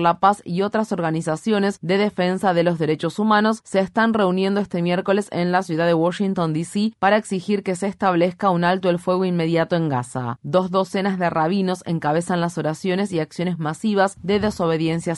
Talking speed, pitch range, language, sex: 180 wpm, 170-195 Hz, Spanish, female